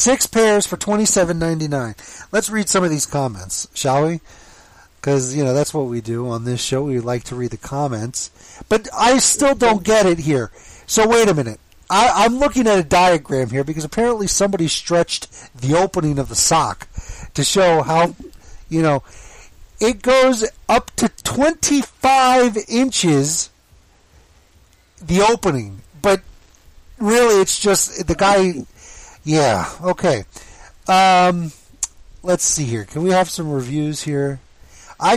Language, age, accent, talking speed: English, 40-59, American, 150 wpm